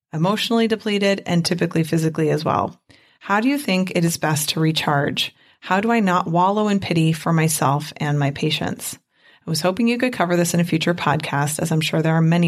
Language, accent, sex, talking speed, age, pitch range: English, American, female, 215 wpm, 30-49, 170-220 Hz